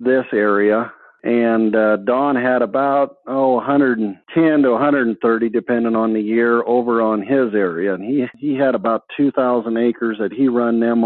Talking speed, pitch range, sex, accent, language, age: 165 wpm, 110-125 Hz, male, American, English, 50-69